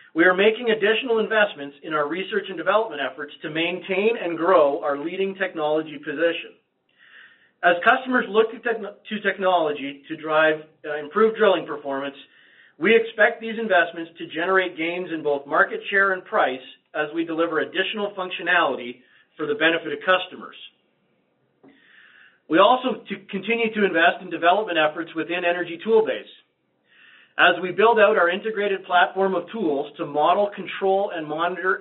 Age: 40-59